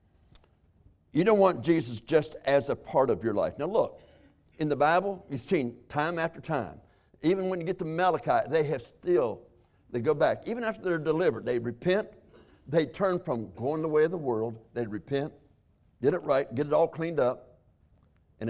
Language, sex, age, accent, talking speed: English, male, 60-79, American, 190 wpm